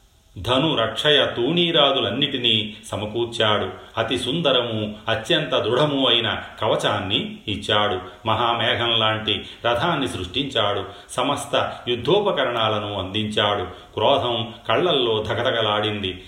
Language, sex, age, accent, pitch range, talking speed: Telugu, male, 40-59, native, 105-120 Hz, 75 wpm